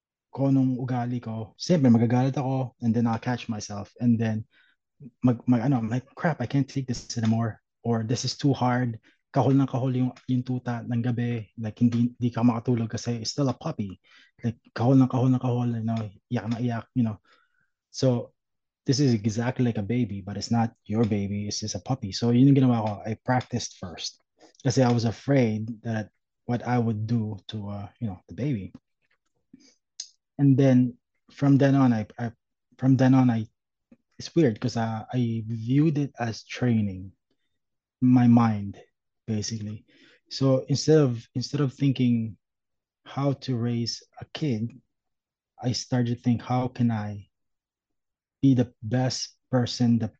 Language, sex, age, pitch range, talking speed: Filipino, male, 20-39, 110-130 Hz, 160 wpm